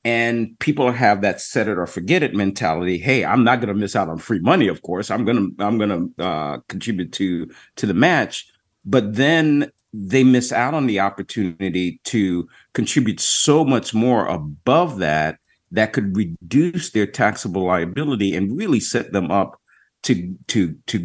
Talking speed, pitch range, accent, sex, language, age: 170 wpm, 90-115 Hz, American, male, English, 50-69